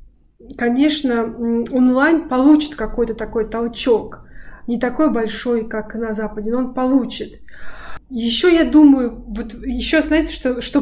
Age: 20-39